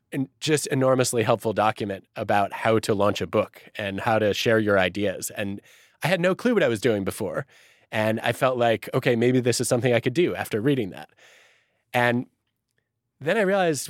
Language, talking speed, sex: English, 195 wpm, male